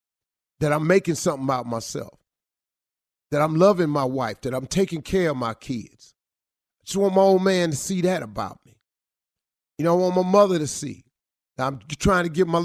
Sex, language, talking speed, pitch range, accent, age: male, English, 205 wpm, 135-185 Hz, American, 40-59